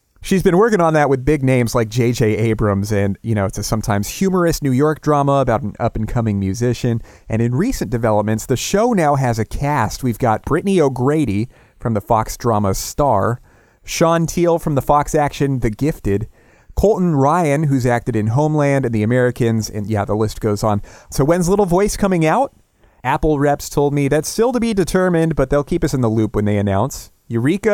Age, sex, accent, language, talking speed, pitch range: 30-49, male, American, English, 200 wpm, 110-150 Hz